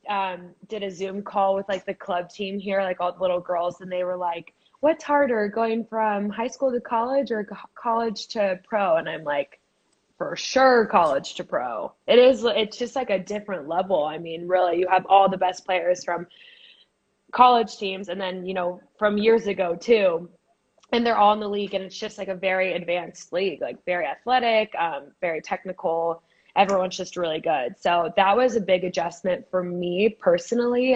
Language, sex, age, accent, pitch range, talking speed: English, female, 20-39, American, 180-225 Hz, 195 wpm